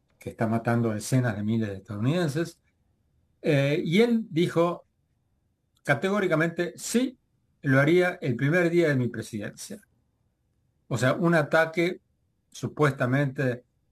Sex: male